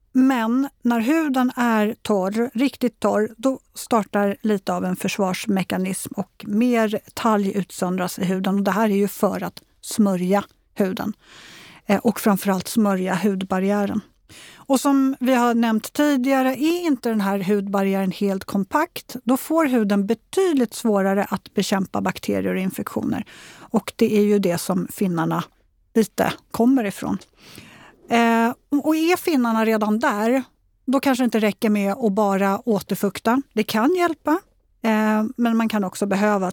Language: Swedish